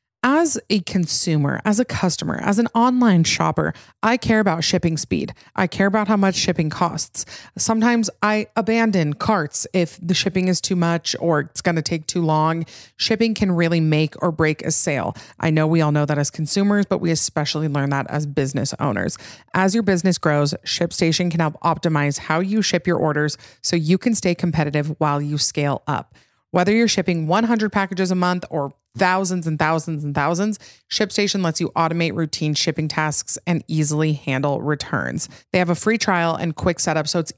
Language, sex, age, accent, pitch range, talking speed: English, female, 30-49, American, 155-190 Hz, 190 wpm